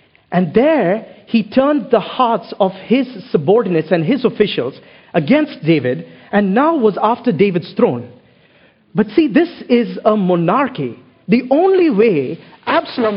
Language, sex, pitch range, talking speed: English, male, 155-225 Hz, 135 wpm